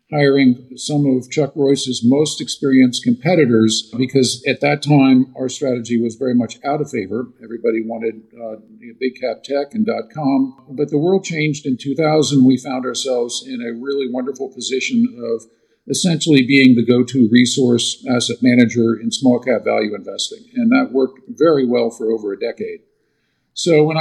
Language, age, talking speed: English, 50-69, 165 wpm